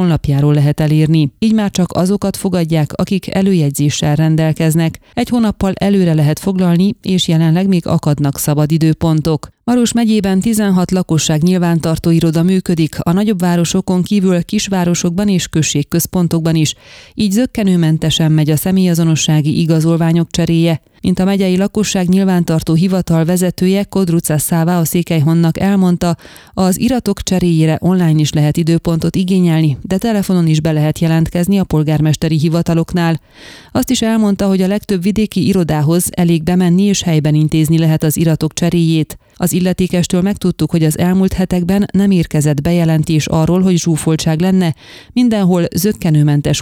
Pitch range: 160-190 Hz